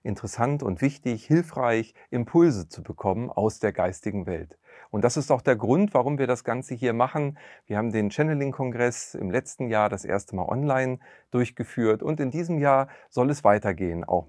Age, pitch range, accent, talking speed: 40-59, 105-135 Hz, German, 180 wpm